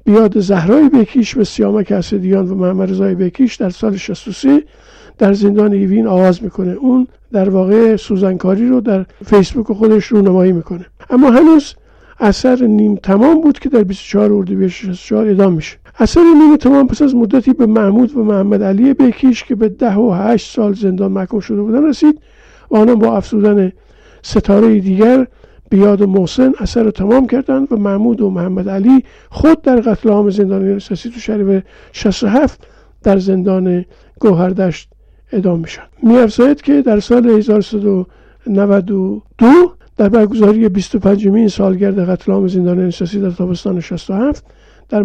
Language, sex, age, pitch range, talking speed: Persian, male, 50-69, 195-245 Hz, 150 wpm